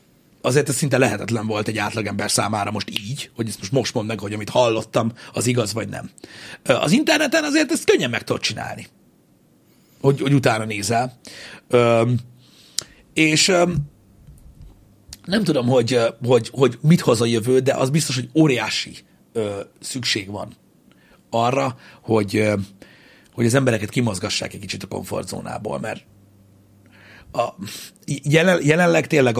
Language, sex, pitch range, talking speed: Hungarian, male, 110-145 Hz, 135 wpm